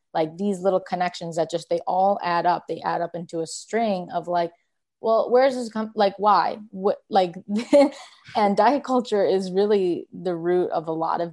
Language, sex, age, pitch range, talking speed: English, female, 20-39, 170-200 Hz, 195 wpm